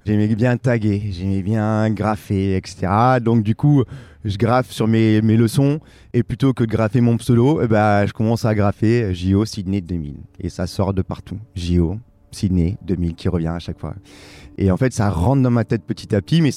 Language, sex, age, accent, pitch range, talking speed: French, male, 30-49, French, 100-130 Hz, 205 wpm